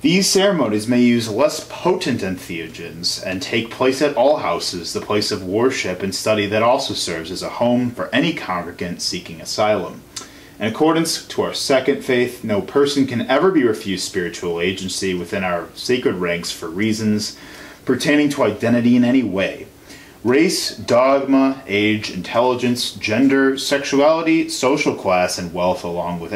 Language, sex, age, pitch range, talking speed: English, male, 30-49, 95-130 Hz, 155 wpm